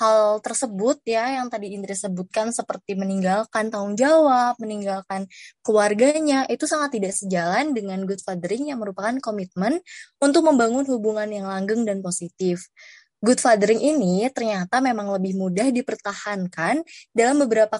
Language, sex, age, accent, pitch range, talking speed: Indonesian, female, 20-39, native, 190-245 Hz, 135 wpm